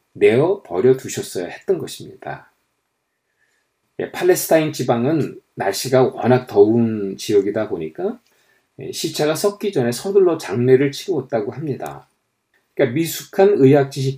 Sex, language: male, Korean